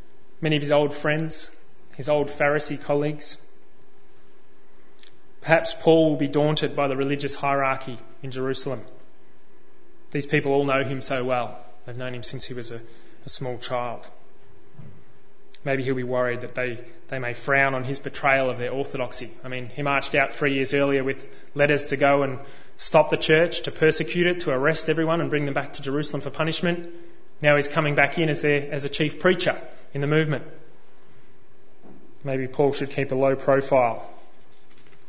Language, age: English, 20-39